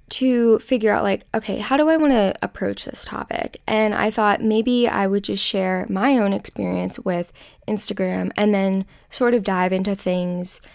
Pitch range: 185-210 Hz